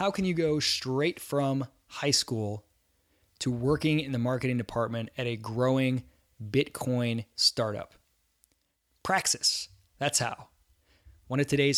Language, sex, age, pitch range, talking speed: English, male, 20-39, 120-150 Hz, 125 wpm